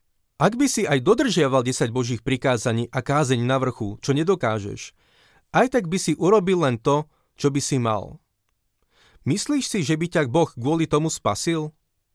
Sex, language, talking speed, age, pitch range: male, Slovak, 170 wpm, 30-49, 125-165 Hz